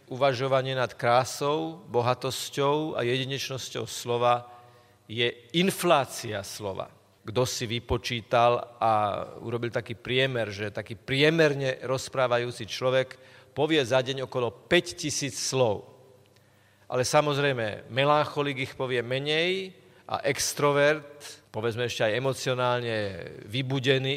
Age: 40-59